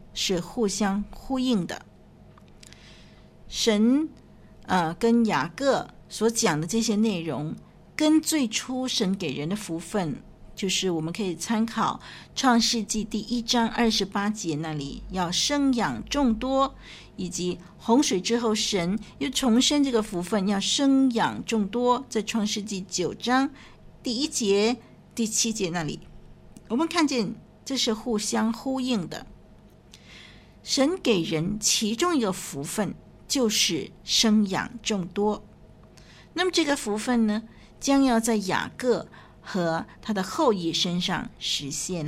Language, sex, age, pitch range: Chinese, female, 50-69, 190-245 Hz